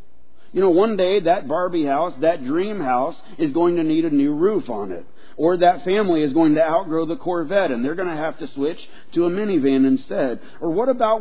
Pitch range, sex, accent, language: 135-205 Hz, male, American, English